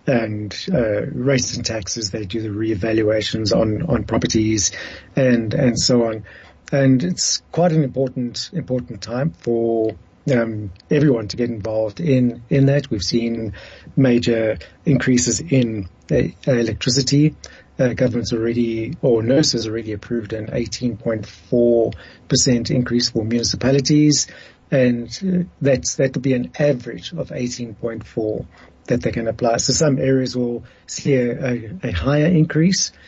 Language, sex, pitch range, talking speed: English, male, 115-135 Hz, 145 wpm